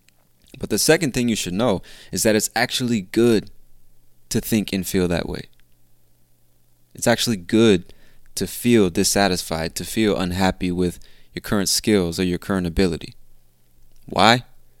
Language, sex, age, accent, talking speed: English, male, 20-39, American, 145 wpm